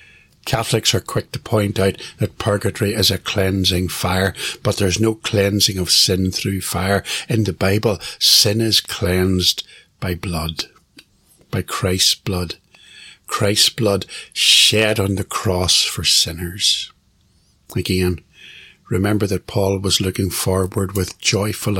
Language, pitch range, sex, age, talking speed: English, 95-110 Hz, male, 60-79, 130 wpm